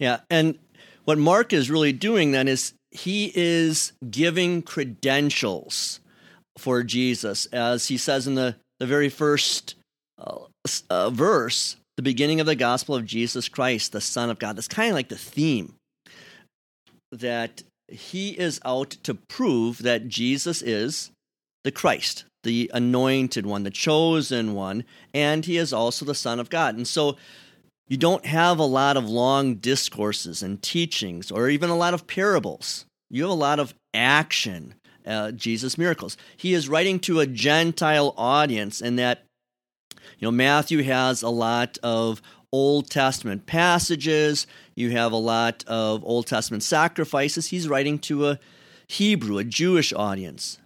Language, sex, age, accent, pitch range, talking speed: English, male, 40-59, American, 120-160 Hz, 155 wpm